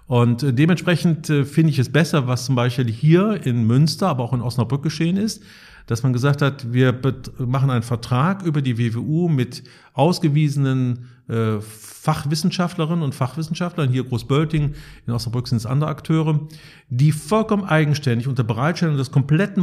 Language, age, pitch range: German, 50-69, 125-165 Hz